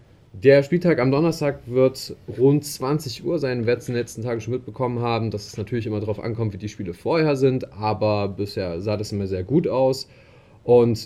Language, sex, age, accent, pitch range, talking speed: German, male, 30-49, German, 100-125 Hz, 200 wpm